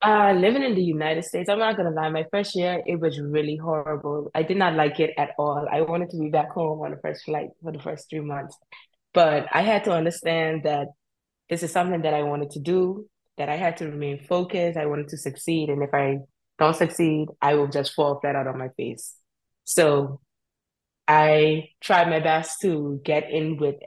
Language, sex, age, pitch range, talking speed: English, female, 20-39, 150-180 Hz, 220 wpm